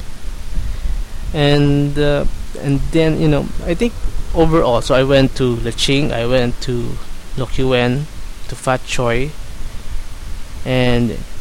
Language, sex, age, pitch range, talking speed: English, male, 20-39, 110-135 Hz, 125 wpm